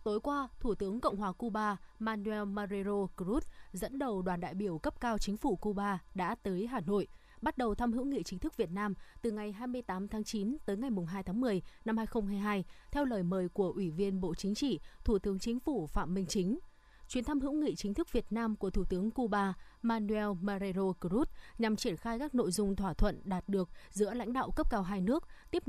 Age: 20-39